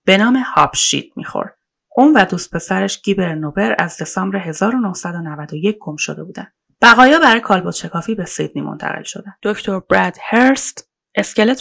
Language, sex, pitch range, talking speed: Persian, female, 180-245 Hz, 140 wpm